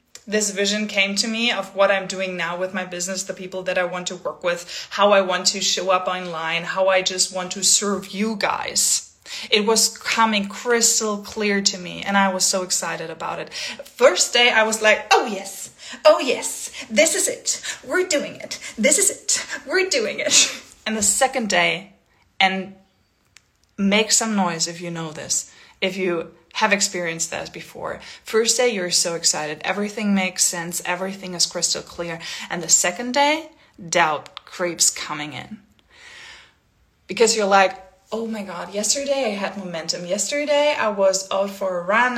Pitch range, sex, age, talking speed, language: 180-225 Hz, female, 20-39, 180 wpm, English